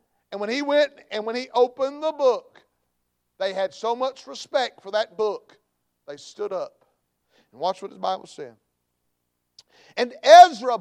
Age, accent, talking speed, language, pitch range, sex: 50-69, American, 160 wpm, English, 195-325 Hz, male